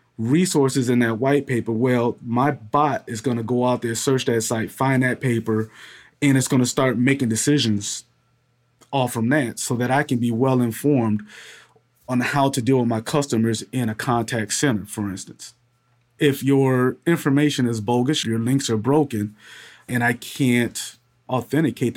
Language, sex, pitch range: English, male, 115-135 Hz